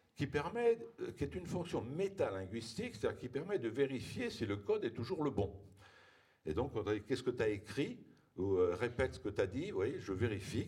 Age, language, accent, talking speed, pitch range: 60-79, French, French, 200 wpm, 95-135 Hz